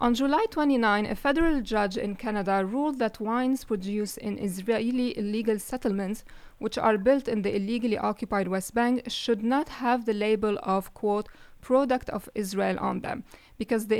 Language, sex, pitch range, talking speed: English, female, 210-255 Hz, 165 wpm